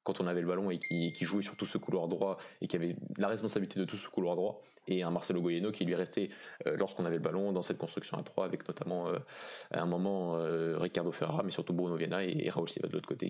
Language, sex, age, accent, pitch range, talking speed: French, male, 20-39, French, 90-105 Hz, 275 wpm